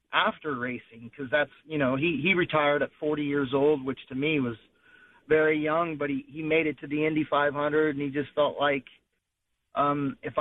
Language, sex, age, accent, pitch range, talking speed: English, male, 40-59, American, 135-150 Hz, 200 wpm